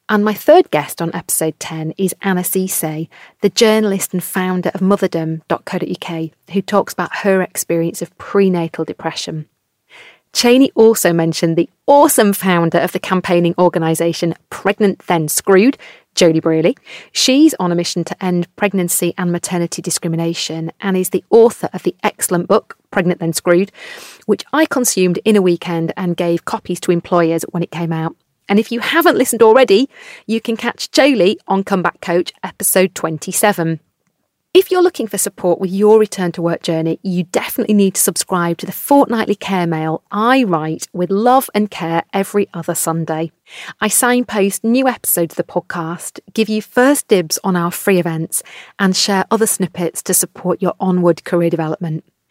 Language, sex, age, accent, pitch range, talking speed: English, female, 30-49, British, 170-215 Hz, 165 wpm